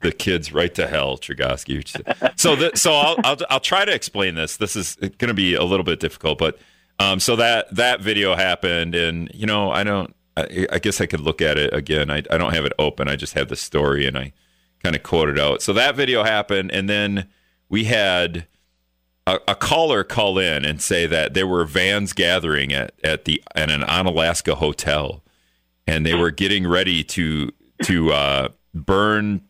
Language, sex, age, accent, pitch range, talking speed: English, male, 40-59, American, 80-100 Hz, 200 wpm